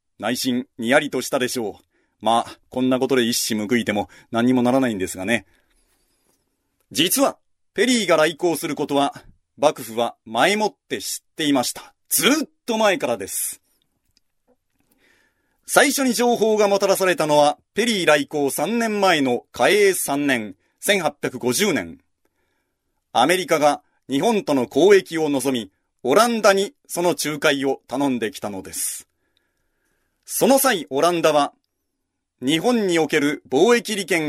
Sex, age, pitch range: male, 40-59, 140-200 Hz